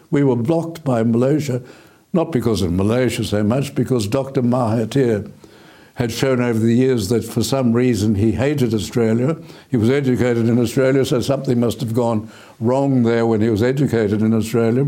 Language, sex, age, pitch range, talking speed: English, male, 60-79, 115-140 Hz, 175 wpm